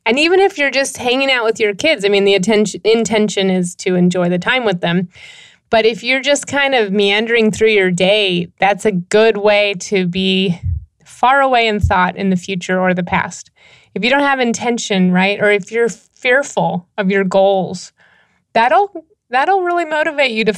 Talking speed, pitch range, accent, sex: 195 wpm, 195-245 Hz, American, female